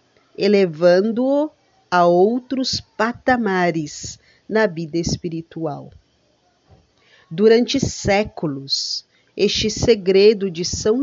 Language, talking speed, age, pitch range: Portuguese, 70 wpm, 40-59, 170-235 Hz